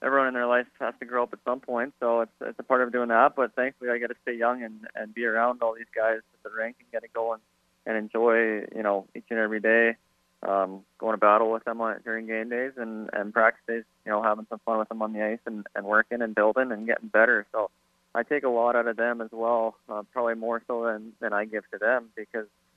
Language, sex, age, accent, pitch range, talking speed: English, male, 20-39, American, 100-115 Hz, 260 wpm